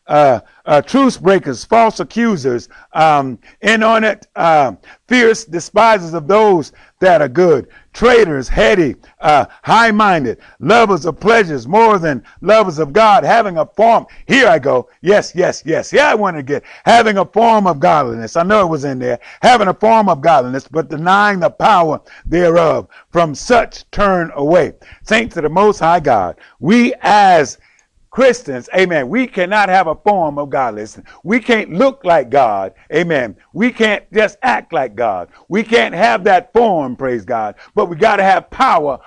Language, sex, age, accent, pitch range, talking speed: English, male, 50-69, American, 150-220 Hz, 170 wpm